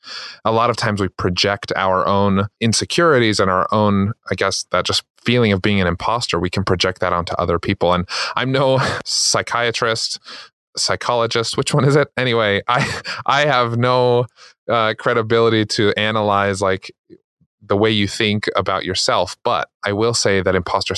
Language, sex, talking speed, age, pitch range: English, male, 170 wpm, 20-39, 95-120 Hz